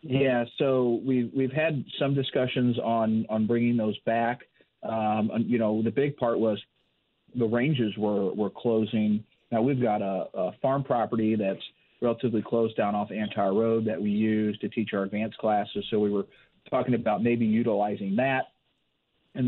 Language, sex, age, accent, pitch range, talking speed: English, male, 40-59, American, 105-120 Hz, 175 wpm